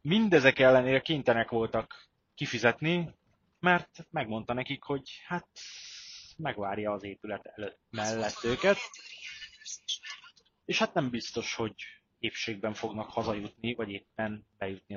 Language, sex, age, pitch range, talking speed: Hungarian, male, 30-49, 110-140 Hz, 110 wpm